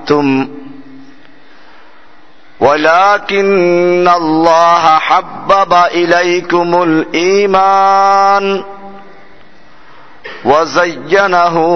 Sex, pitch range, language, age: male, 130-170 Hz, Bengali, 50-69